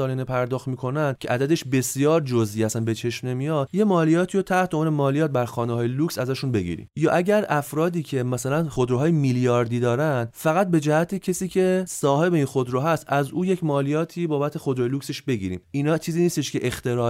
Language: English